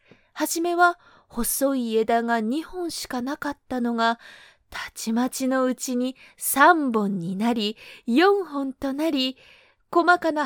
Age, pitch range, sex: 20-39, 225-310 Hz, female